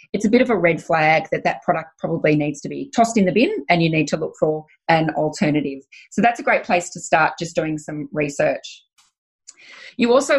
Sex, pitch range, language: female, 150-205 Hz, English